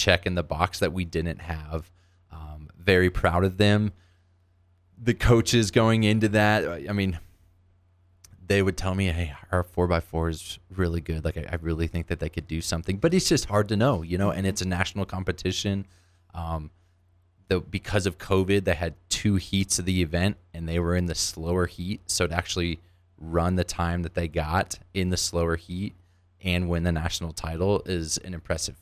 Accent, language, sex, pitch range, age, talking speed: American, English, male, 85-95 Hz, 20-39, 195 wpm